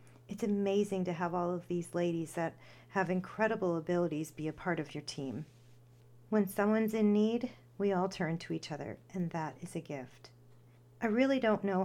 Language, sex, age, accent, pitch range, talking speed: English, female, 40-59, American, 160-200 Hz, 185 wpm